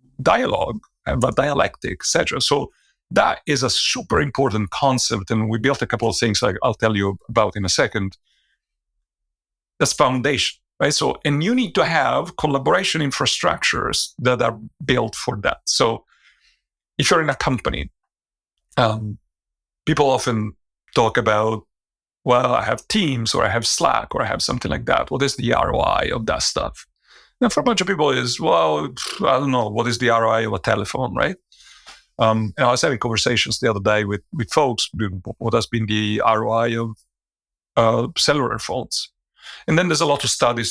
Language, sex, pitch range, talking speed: English, male, 105-130 Hz, 185 wpm